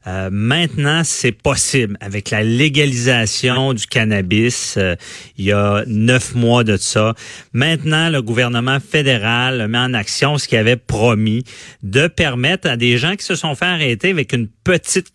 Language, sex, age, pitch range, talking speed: French, male, 40-59, 115-150 Hz, 160 wpm